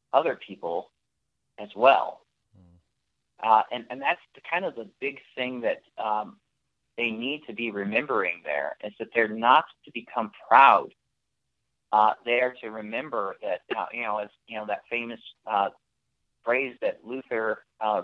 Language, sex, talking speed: English, male, 155 wpm